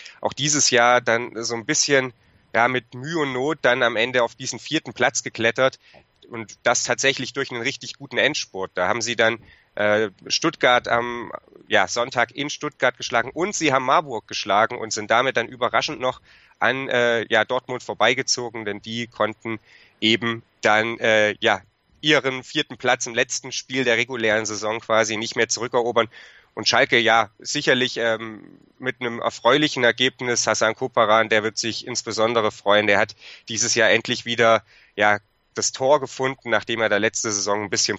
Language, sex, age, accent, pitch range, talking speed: German, male, 30-49, German, 105-125 Hz, 170 wpm